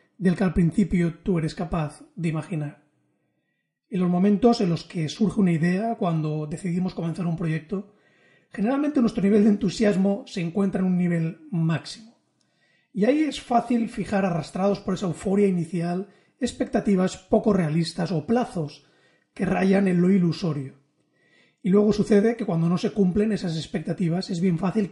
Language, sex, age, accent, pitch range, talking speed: Spanish, male, 30-49, Spanish, 170-210 Hz, 160 wpm